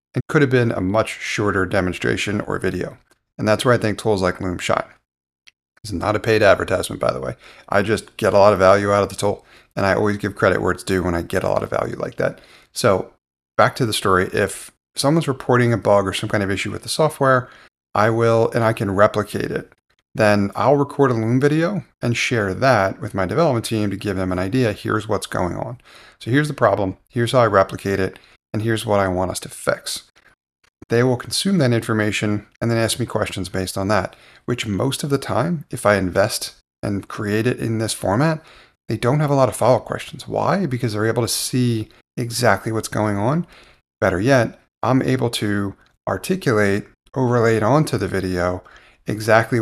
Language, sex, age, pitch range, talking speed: English, male, 30-49, 100-125 Hz, 215 wpm